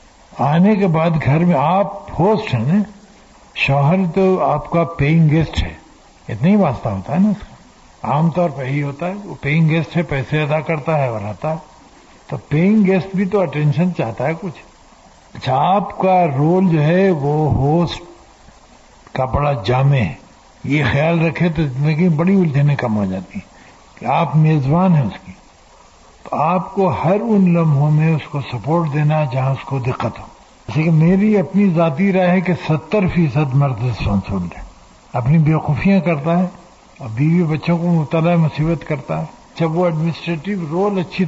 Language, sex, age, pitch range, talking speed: Urdu, male, 60-79, 145-185 Hz, 175 wpm